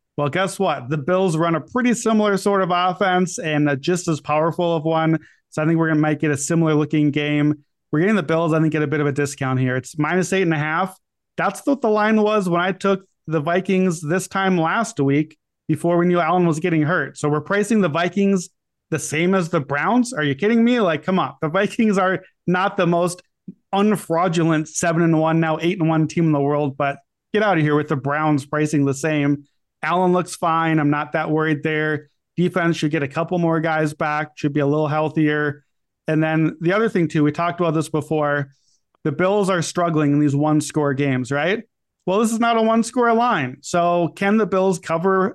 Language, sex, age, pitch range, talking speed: English, male, 30-49, 155-190 Hz, 225 wpm